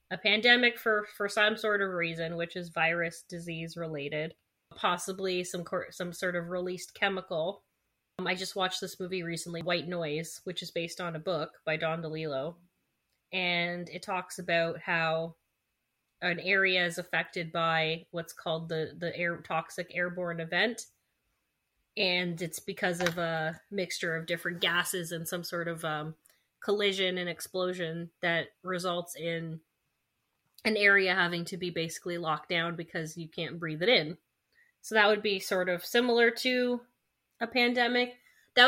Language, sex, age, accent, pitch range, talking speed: English, female, 20-39, American, 165-190 Hz, 160 wpm